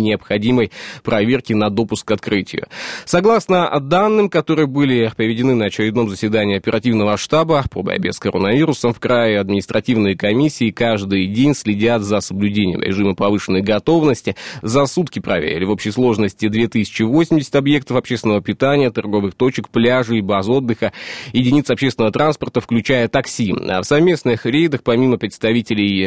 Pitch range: 110-140 Hz